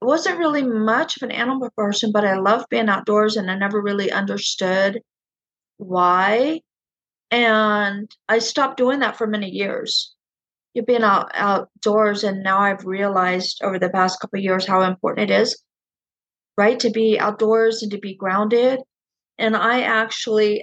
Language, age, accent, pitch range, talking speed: English, 40-59, American, 210-260 Hz, 160 wpm